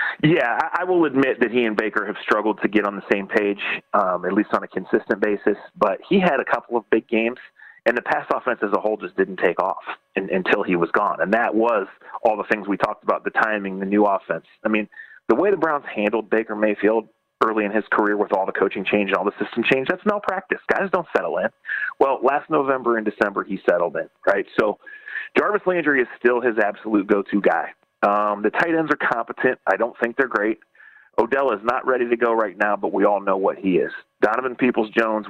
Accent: American